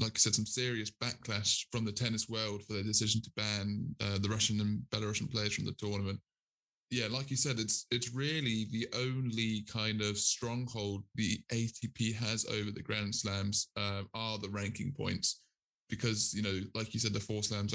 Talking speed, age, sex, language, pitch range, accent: 195 wpm, 20-39, male, English, 105-120 Hz, British